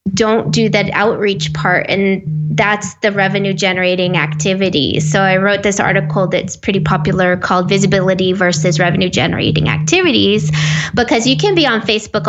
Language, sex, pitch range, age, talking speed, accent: English, female, 185-230 Hz, 20-39, 150 wpm, American